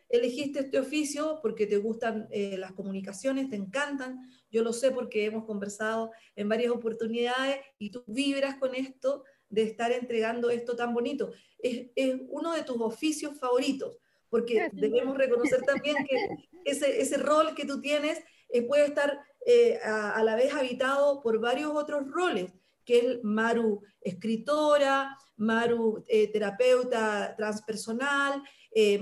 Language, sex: Spanish, female